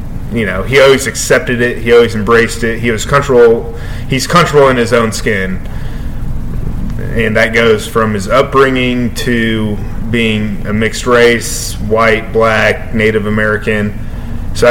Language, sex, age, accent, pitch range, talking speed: English, male, 30-49, American, 110-120 Hz, 145 wpm